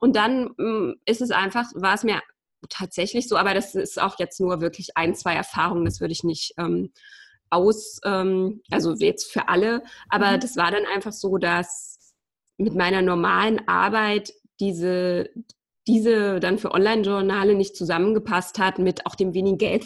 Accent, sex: German, female